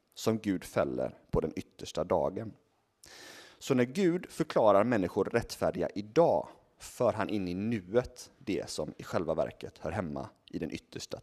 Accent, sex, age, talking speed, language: native, male, 30-49, 155 wpm, Swedish